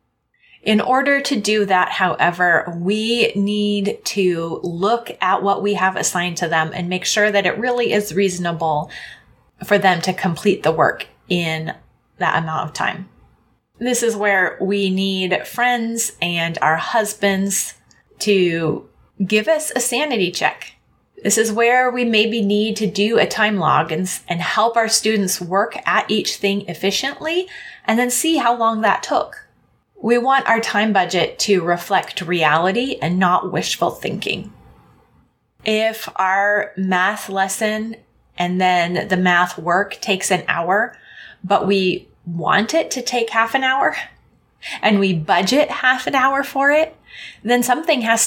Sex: female